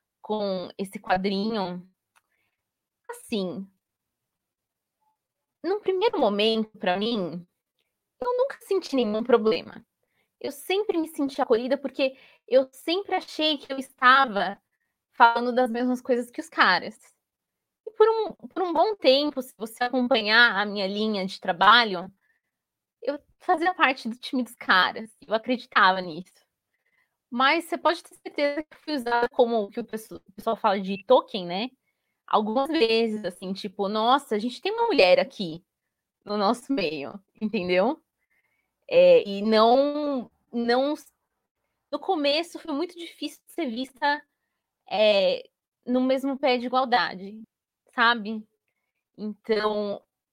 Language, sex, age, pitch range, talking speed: Portuguese, female, 20-39, 215-295 Hz, 130 wpm